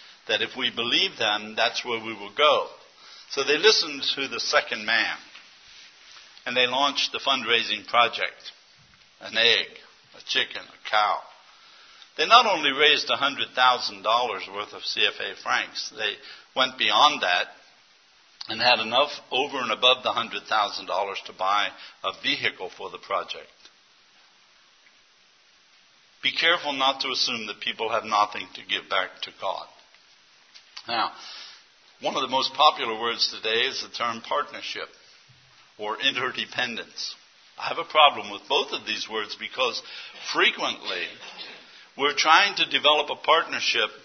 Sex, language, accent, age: male, English, American, 60-79